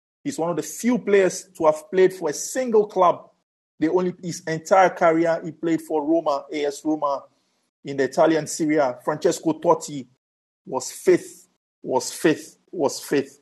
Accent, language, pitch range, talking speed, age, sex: Nigerian, English, 145-185 Hz, 160 wpm, 50-69, male